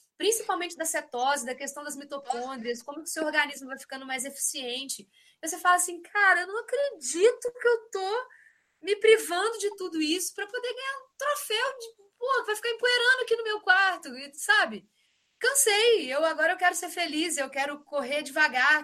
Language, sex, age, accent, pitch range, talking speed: Portuguese, female, 20-39, Brazilian, 275-370 Hz, 180 wpm